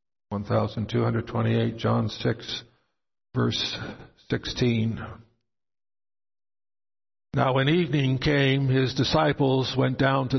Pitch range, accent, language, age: 115-140 Hz, American, English, 60-79